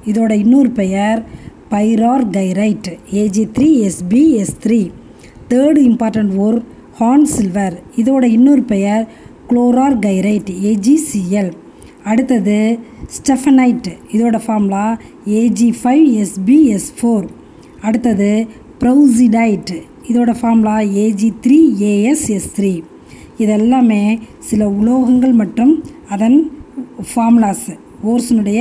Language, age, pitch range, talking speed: Tamil, 20-39, 210-255 Hz, 75 wpm